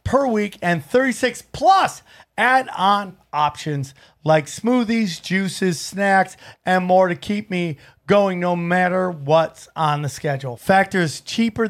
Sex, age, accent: male, 40-59, American